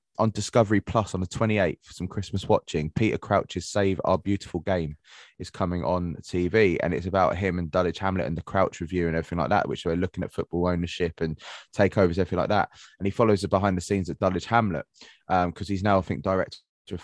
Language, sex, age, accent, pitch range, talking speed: English, male, 20-39, British, 85-100 Hz, 225 wpm